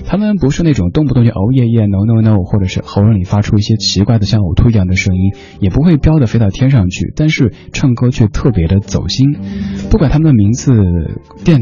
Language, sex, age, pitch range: Chinese, male, 20-39, 95-115 Hz